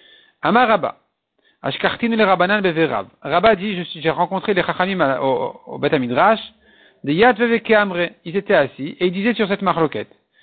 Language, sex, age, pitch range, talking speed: French, male, 50-69, 155-210 Hz, 110 wpm